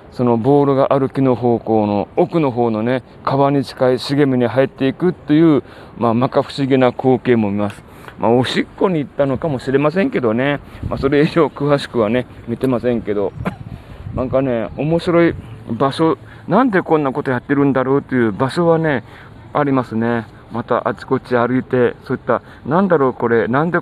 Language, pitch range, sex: Japanese, 115-145 Hz, male